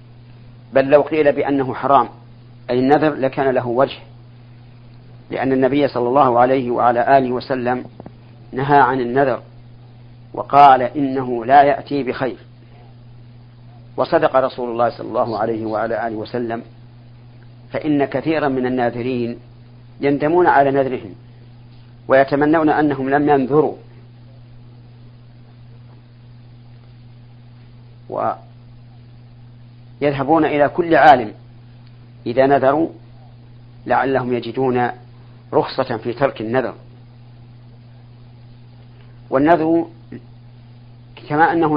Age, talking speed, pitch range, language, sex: 50-69, 90 wpm, 120-135 Hz, Arabic, male